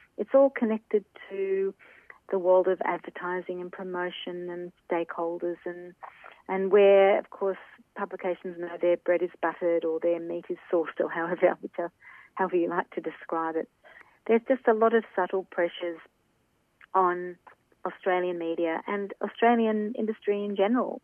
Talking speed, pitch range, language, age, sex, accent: 150 wpm, 170-200 Hz, English, 40-59, female, Australian